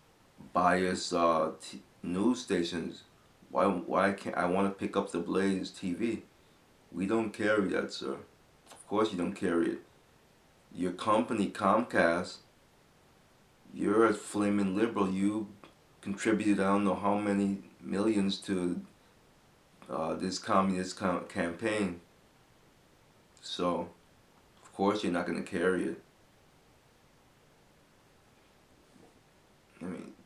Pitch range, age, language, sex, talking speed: 90-100 Hz, 30-49, English, male, 115 wpm